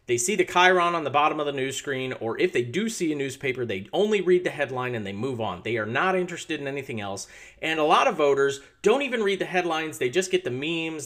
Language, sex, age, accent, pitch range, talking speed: English, male, 40-59, American, 120-170 Hz, 265 wpm